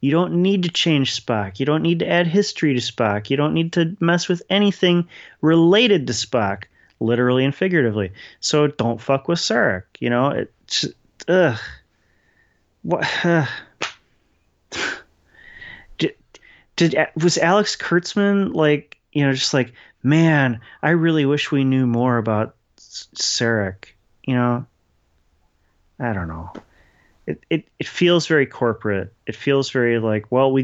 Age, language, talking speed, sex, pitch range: 30-49, English, 145 wpm, male, 105-160 Hz